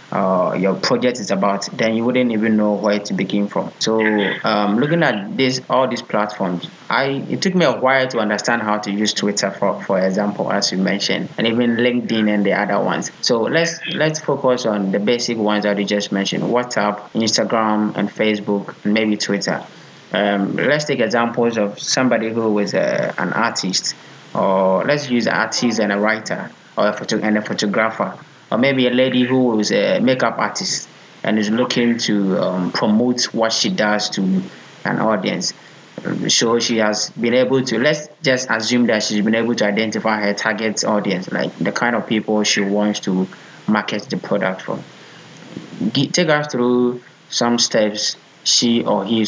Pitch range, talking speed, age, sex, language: 105-120 Hz, 185 wpm, 20-39, male, English